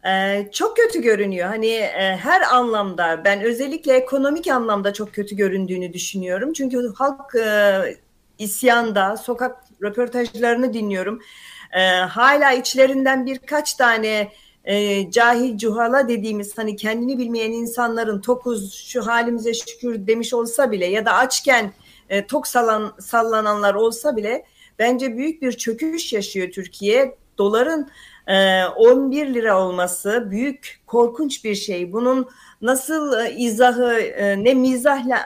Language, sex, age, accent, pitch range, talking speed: Turkish, female, 40-59, native, 205-255 Hz, 120 wpm